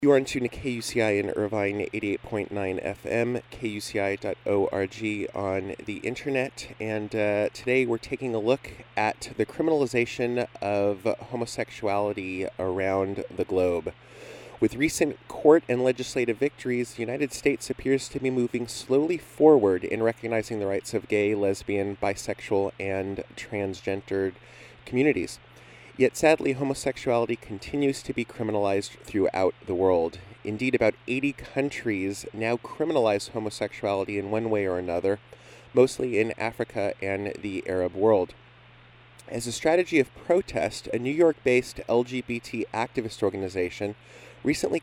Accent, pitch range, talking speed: American, 100-125 Hz, 130 wpm